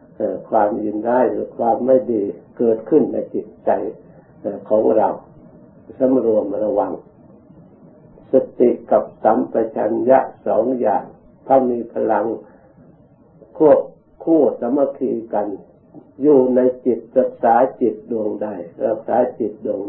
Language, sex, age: Thai, male, 60-79